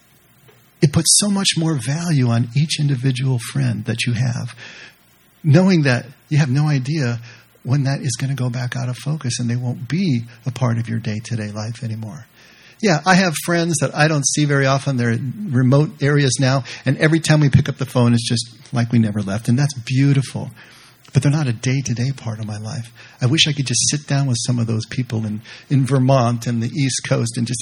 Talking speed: 225 wpm